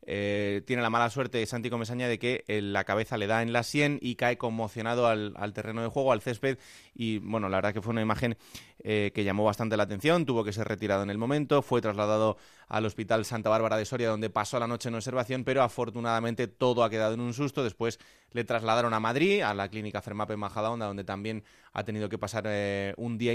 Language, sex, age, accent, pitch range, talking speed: Spanish, male, 30-49, Spanish, 105-125 Hz, 230 wpm